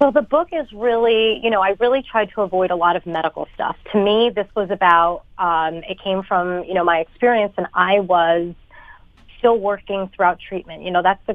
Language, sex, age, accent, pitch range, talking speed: English, female, 30-49, American, 170-200 Hz, 215 wpm